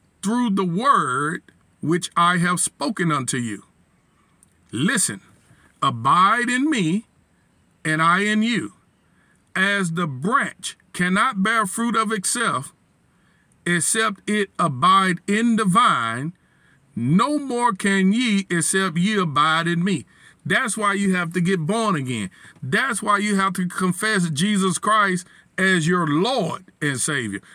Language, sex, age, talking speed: English, male, 50-69, 135 wpm